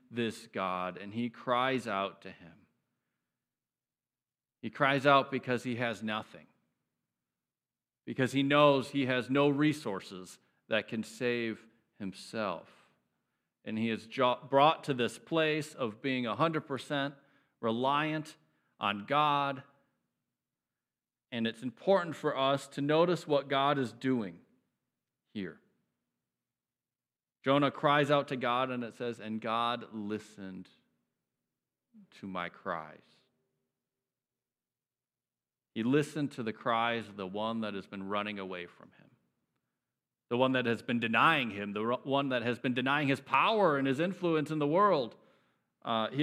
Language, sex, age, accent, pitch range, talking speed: English, male, 40-59, American, 105-140 Hz, 135 wpm